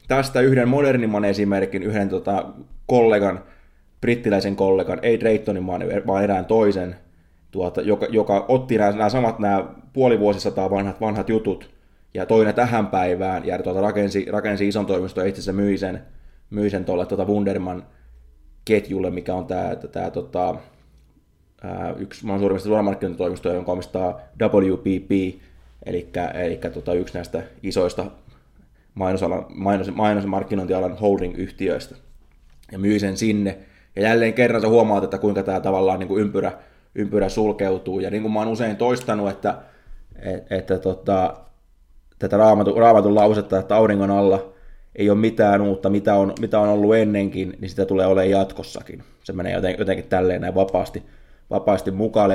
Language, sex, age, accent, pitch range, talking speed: Finnish, male, 20-39, native, 95-110 Hz, 145 wpm